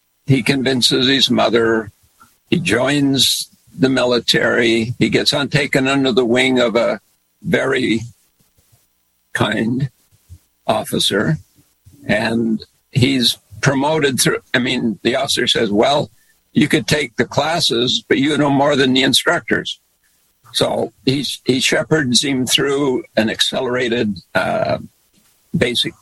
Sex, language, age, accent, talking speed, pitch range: male, English, 60-79, American, 115 wpm, 110-130 Hz